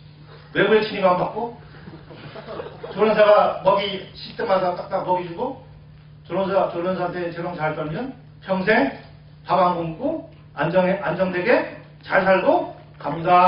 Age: 40-59